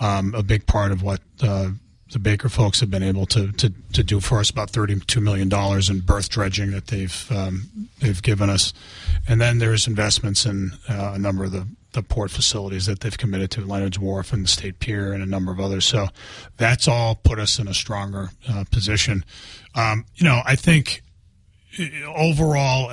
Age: 30-49